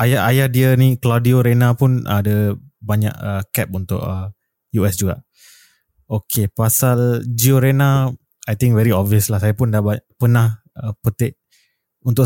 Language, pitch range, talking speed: Malay, 110-125 Hz, 150 wpm